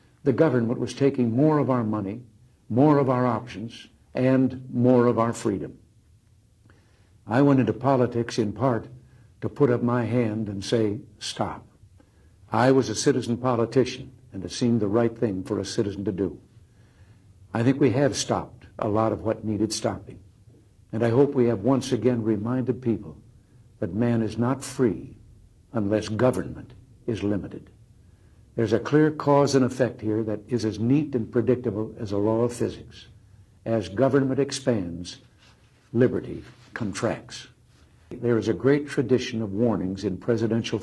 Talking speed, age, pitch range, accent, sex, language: 160 wpm, 60-79, 110-125 Hz, American, male, English